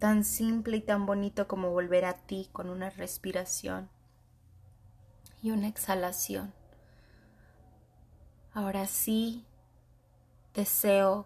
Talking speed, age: 95 wpm, 20-39